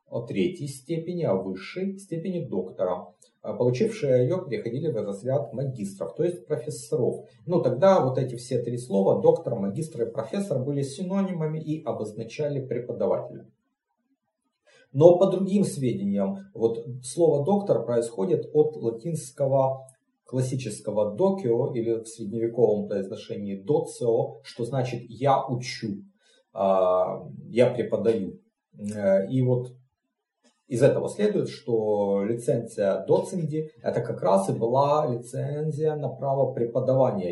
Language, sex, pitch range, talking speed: Russian, male, 115-165 Hz, 115 wpm